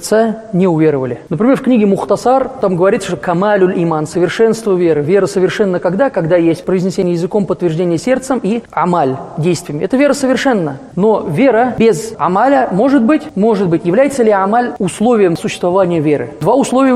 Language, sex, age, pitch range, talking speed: Russian, male, 20-39, 175-225 Hz, 155 wpm